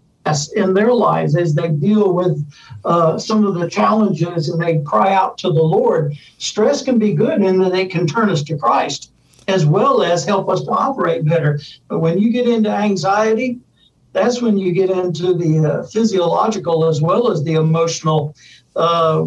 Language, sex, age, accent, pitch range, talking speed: English, male, 60-79, American, 165-205 Hz, 185 wpm